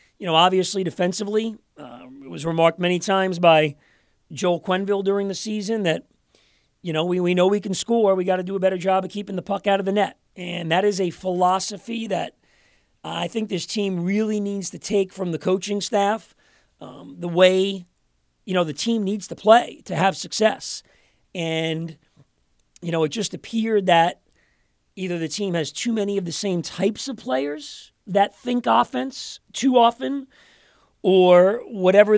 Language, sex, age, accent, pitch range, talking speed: English, male, 40-59, American, 175-210 Hz, 180 wpm